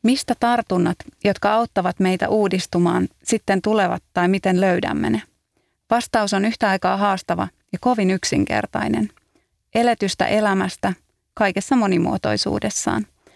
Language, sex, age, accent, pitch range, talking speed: Finnish, female, 30-49, native, 180-205 Hz, 110 wpm